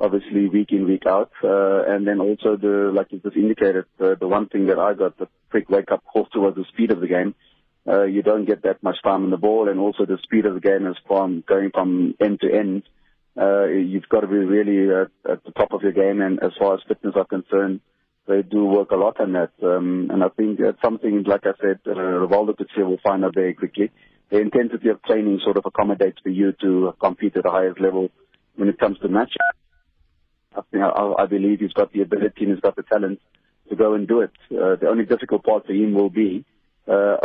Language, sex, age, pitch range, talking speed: English, male, 30-49, 95-105 Hz, 235 wpm